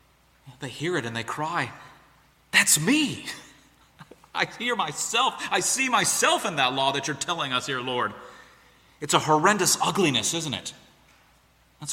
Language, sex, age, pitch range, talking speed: English, male, 30-49, 115-160 Hz, 150 wpm